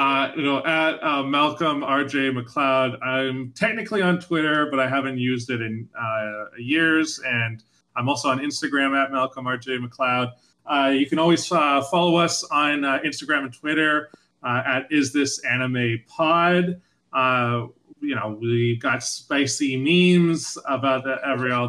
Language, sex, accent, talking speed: English, male, American, 160 wpm